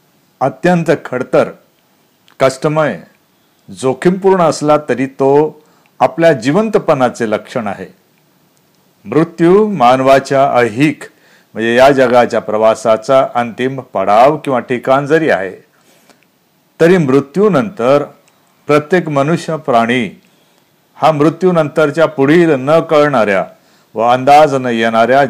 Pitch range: 115-160 Hz